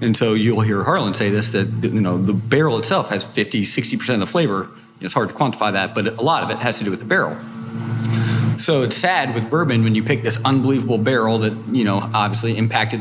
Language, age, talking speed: English, 30-49, 235 wpm